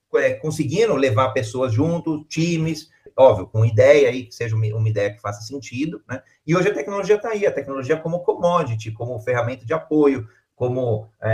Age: 30-49